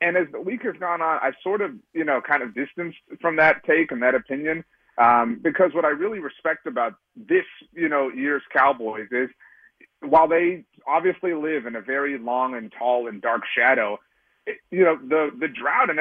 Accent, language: American, English